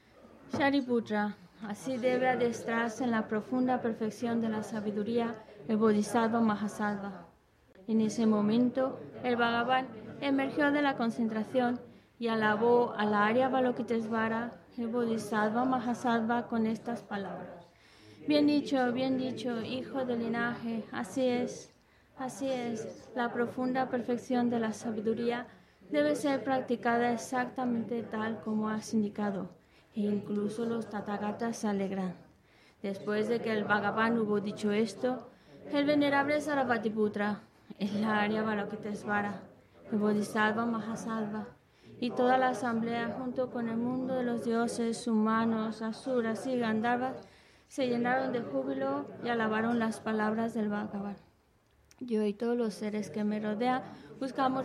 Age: 20-39